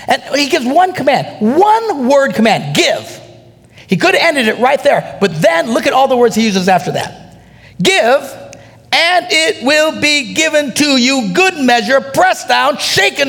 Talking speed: 180 wpm